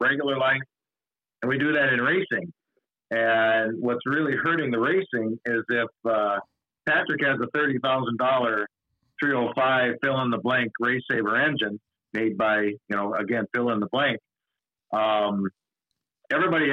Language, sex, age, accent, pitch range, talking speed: English, male, 50-69, American, 105-120 Hz, 150 wpm